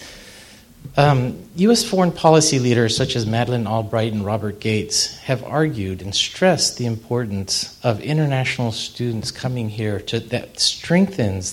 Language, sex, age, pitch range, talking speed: English, male, 50-69, 105-135 Hz, 130 wpm